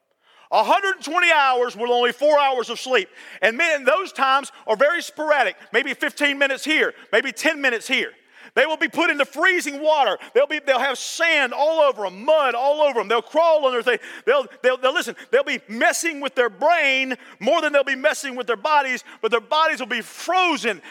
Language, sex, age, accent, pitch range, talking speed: English, male, 40-59, American, 235-305 Hz, 195 wpm